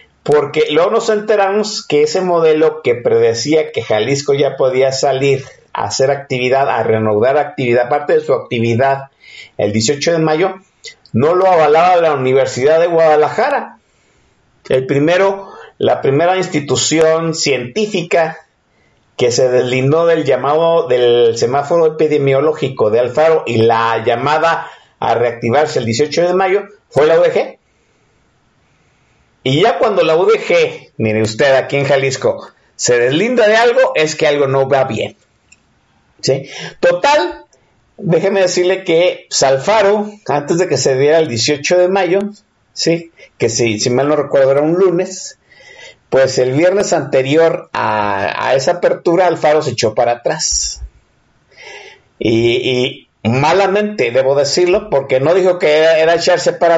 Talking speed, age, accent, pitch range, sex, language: 145 wpm, 50-69, Mexican, 135-190 Hz, male, Spanish